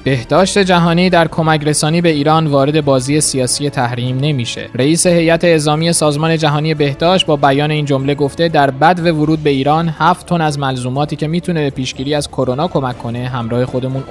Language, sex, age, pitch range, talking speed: Persian, male, 20-39, 130-160 Hz, 180 wpm